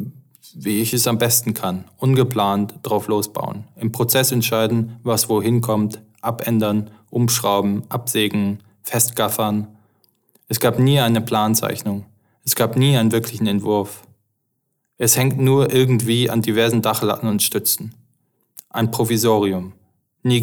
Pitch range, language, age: 105-120 Hz, German, 20-39